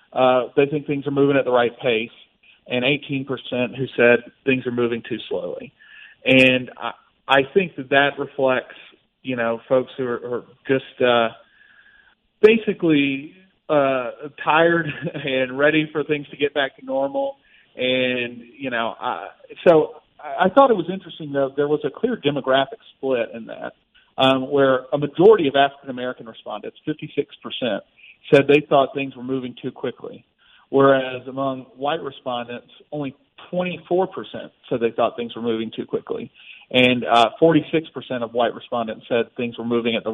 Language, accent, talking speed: English, American, 160 wpm